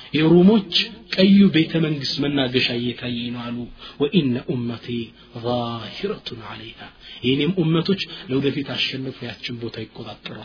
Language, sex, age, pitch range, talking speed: Amharic, male, 30-49, 125-165 Hz, 115 wpm